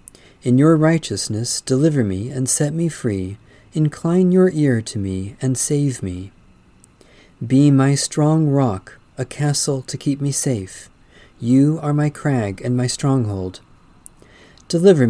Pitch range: 115-150 Hz